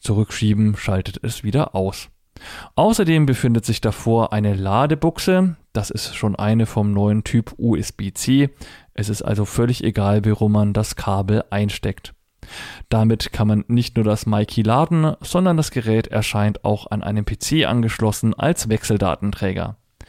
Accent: German